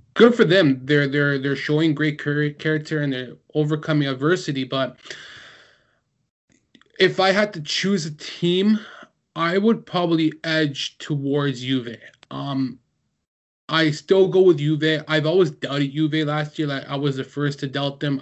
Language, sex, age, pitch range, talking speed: English, male, 20-39, 140-175 Hz, 155 wpm